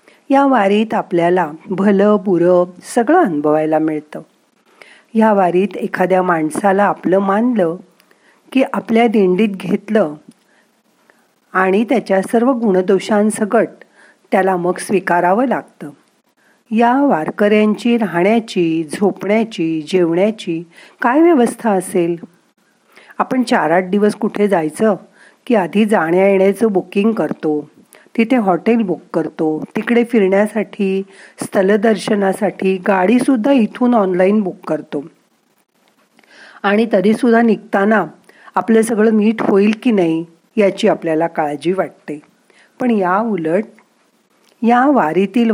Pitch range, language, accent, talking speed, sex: 185-230 Hz, Marathi, native, 100 wpm, female